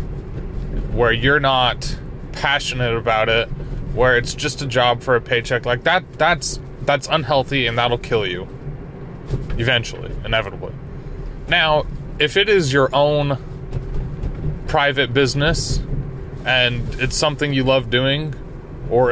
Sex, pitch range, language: male, 125-145 Hz, English